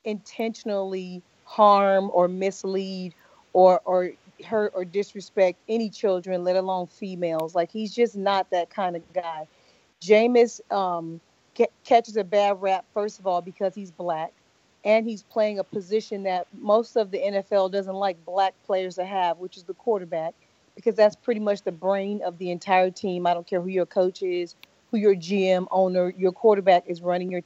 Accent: American